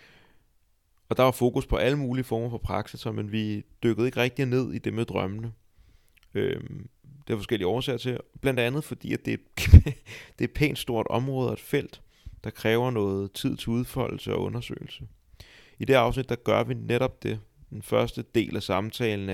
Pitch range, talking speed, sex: 100-125 Hz, 190 wpm, male